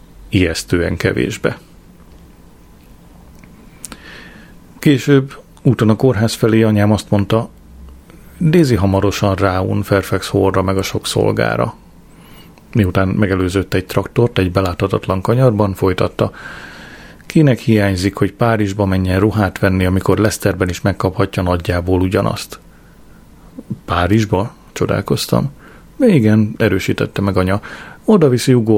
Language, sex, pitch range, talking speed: Hungarian, male, 95-115 Hz, 100 wpm